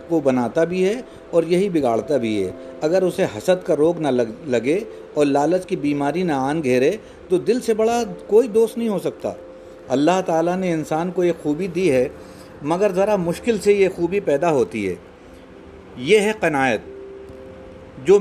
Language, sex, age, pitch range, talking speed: Urdu, male, 50-69, 150-195 Hz, 180 wpm